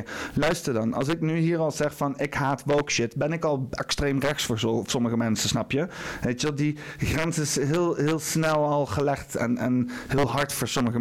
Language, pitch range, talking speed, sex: Dutch, 125-165 Hz, 225 wpm, male